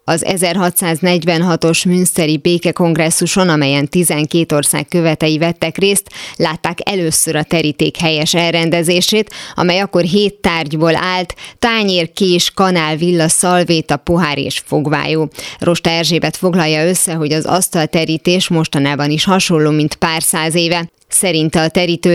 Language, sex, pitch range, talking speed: Hungarian, female, 155-180 Hz, 125 wpm